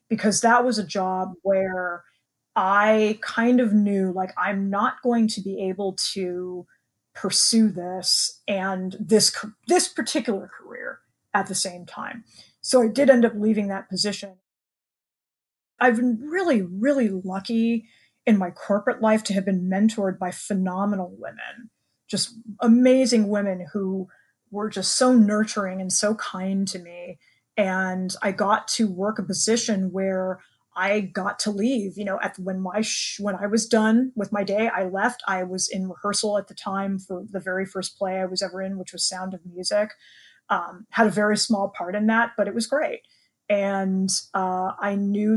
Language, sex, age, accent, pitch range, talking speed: English, female, 20-39, American, 190-220 Hz, 170 wpm